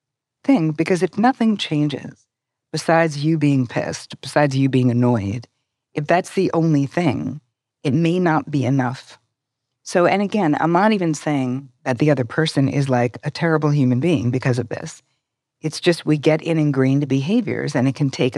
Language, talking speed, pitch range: English, 175 wpm, 130-160 Hz